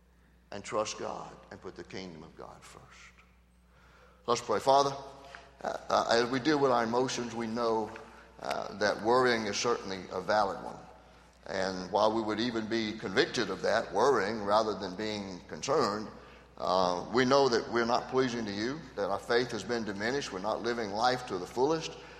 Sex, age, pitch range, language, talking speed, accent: male, 60-79, 95-135 Hz, English, 185 wpm, American